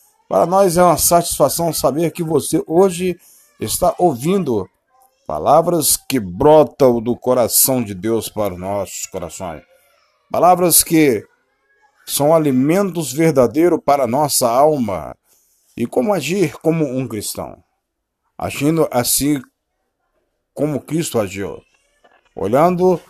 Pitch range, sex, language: 130-170 Hz, male, Portuguese